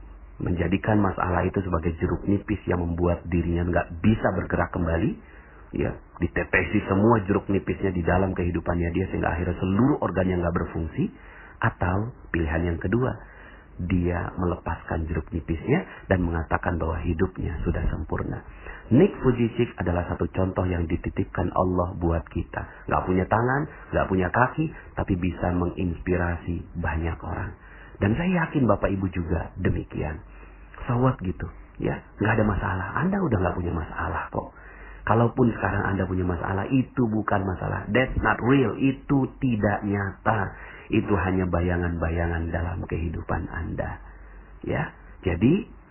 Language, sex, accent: Indonesian, male, native